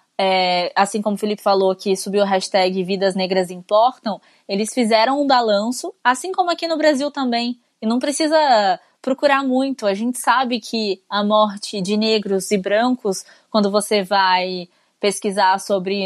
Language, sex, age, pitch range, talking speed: Portuguese, female, 20-39, 205-245 Hz, 155 wpm